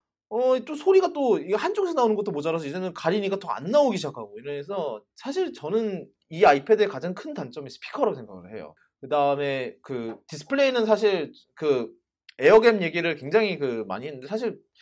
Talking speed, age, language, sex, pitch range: 150 wpm, 30-49, English, male, 145-235 Hz